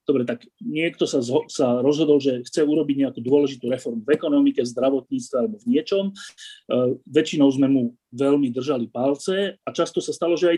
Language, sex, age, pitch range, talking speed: Slovak, male, 30-49, 120-175 Hz, 185 wpm